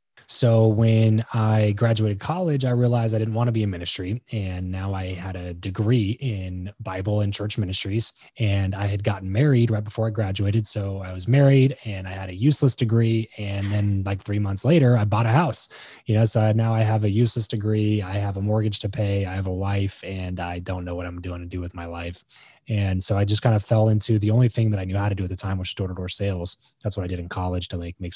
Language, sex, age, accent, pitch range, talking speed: English, male, 20-39, American, 95-110 Hz, 250 wpm